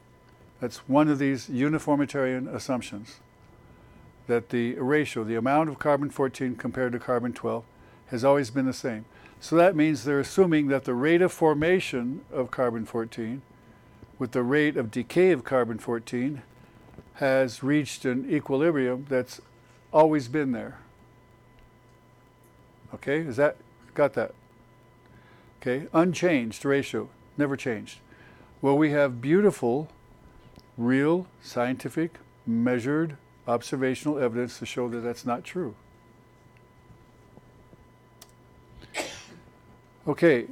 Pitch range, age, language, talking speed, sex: 120-145 Hz, 60-79, English, 110 wpm, male